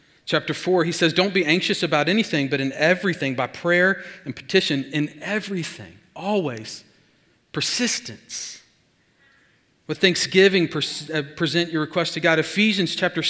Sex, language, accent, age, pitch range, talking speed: male, English, American, 40-59, 130-180 Hz, 140 wpm